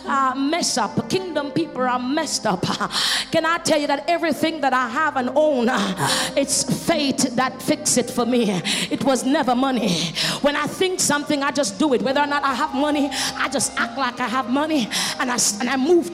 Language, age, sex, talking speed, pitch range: English, 30-49, female, 205 wpm, 255-330 Hz